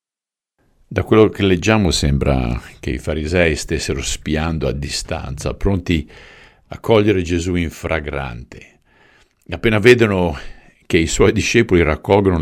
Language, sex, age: Italian, male, 50-69